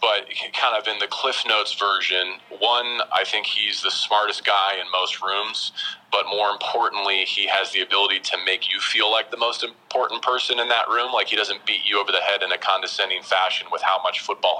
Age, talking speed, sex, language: 40-59, 220 wpm, male, English